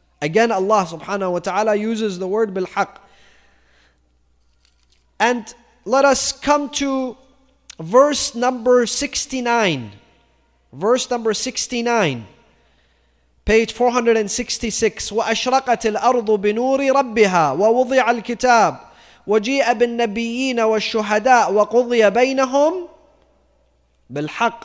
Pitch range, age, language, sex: 220-290 Hz, 30-49, English, male